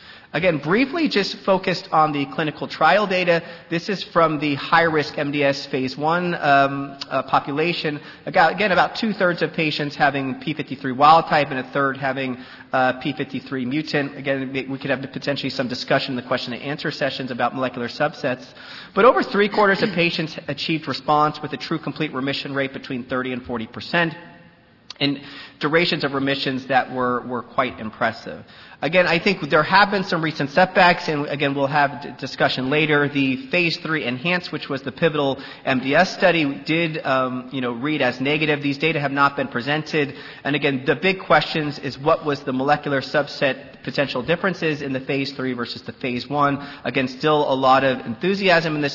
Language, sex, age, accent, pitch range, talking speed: English, male, 30-49, American, 135-165 Hz, 180 wpm